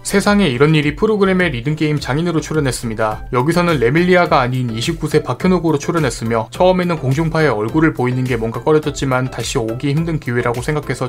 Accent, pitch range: native, 125-170 Hz